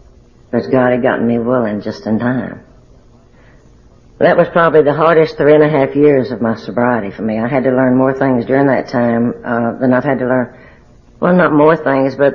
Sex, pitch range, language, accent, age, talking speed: female, 115-140 Hz, English, American, 60-79, 215 wpm